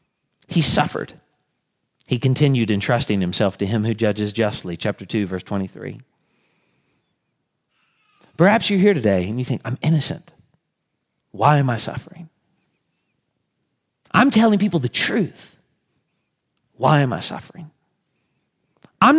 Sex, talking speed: male, 120 wpm